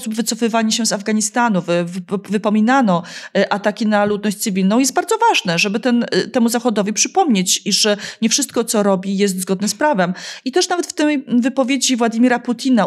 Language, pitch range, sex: Polish, 200-255 Hz, female